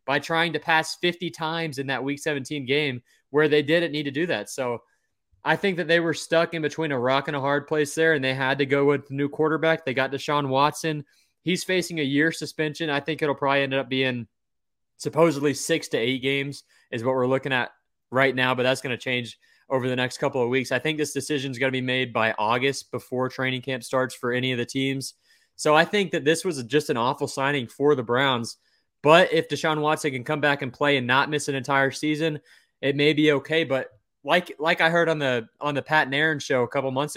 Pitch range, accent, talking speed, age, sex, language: 130-155 Hz, American, 240 wpm, 20-39, male, English